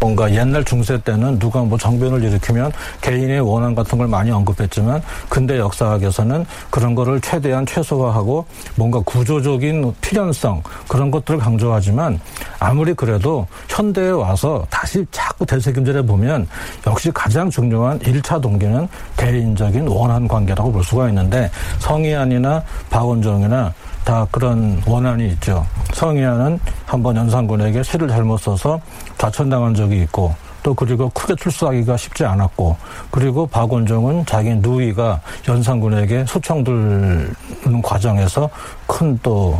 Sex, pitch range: male, 110-140 Hz